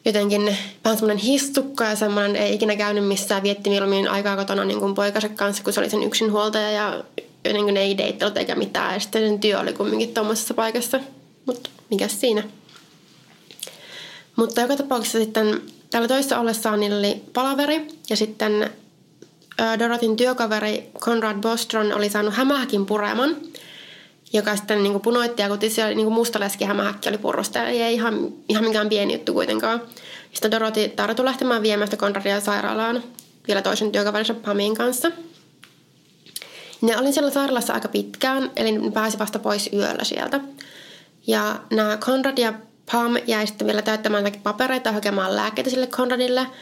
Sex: female